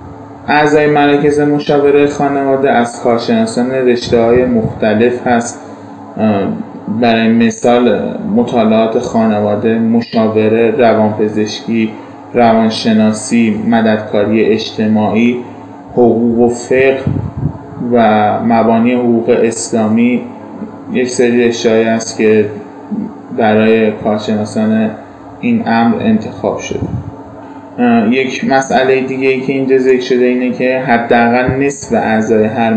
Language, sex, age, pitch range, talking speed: Persian, male, 20-39, 110-140 Hz, 95 wpm